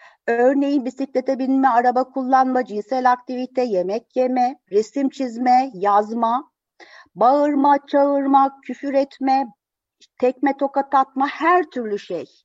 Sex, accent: female, native